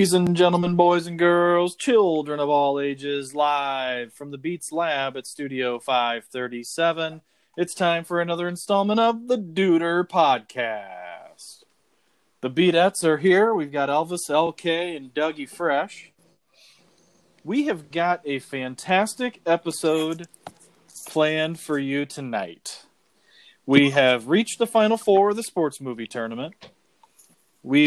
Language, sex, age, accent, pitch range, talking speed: English, male, 30-49, American, 140-180 Hz, 130 wpm